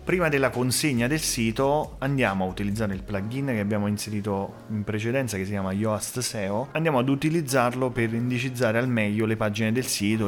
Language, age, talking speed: Italian, 30-49, 180 wpm